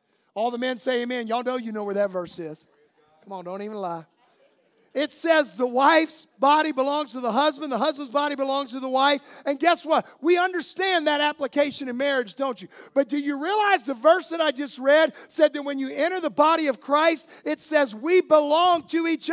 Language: English